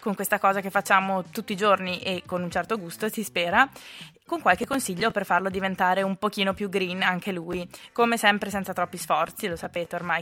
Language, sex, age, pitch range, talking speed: Italian, female, 20-39, 180-225 Hz, 205 wpm